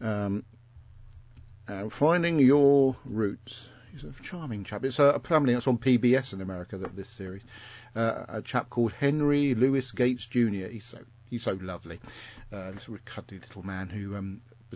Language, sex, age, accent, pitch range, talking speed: English, male, 50-69, British, 100-120 Hz, 185 wpm